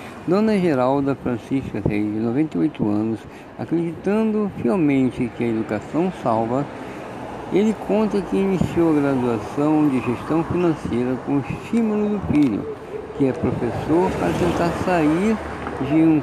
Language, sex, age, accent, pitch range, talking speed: Portuguese, male, 60-79, Brazilian, 125-185 Hz, 130 wpm